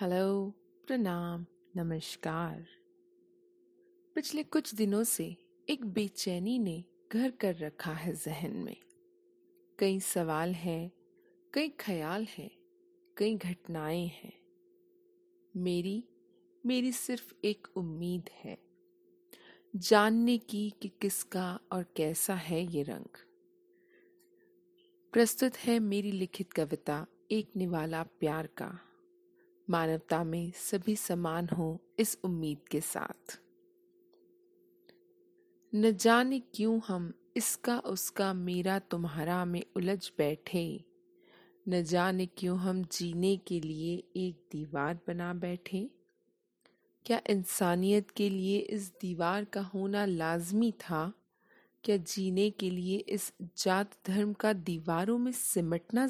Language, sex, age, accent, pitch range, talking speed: Hindi, female, 40-59, native, 175-260 Hz, 110 wpm